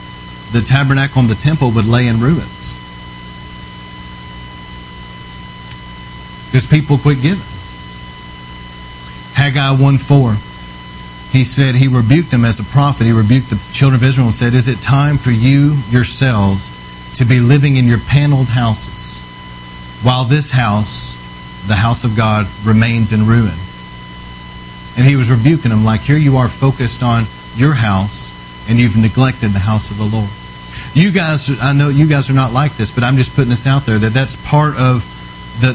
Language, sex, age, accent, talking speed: English, male, 40-59, American, 165 wpm